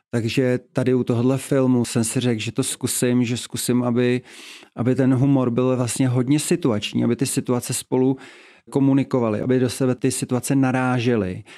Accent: native